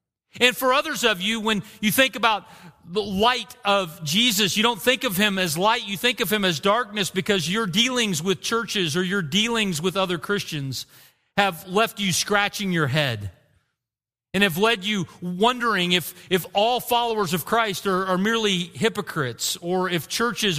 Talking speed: 180 wpm